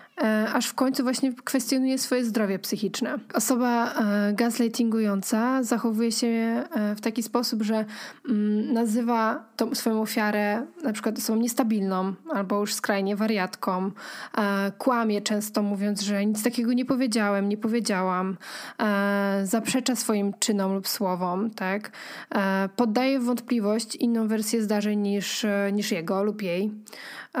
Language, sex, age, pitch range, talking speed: Polish, female, 20-39, 205-245 Hz, 130 wpm